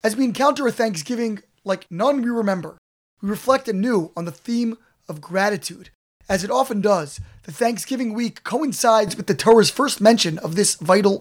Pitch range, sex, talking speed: 180-235 Hz, male, 175 wpm